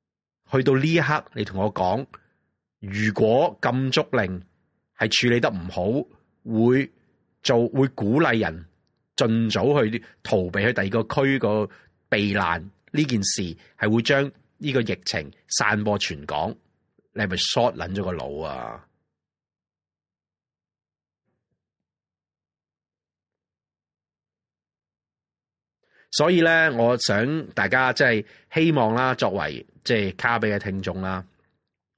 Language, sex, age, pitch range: Chinese, male, 30-49, 100-130 Hz